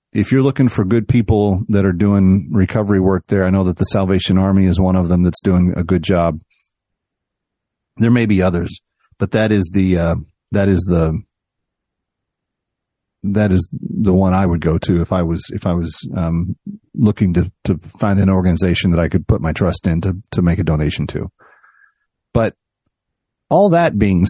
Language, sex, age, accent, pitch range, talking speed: English, male, 40-59, American, 90-110 Hz, 190 wpm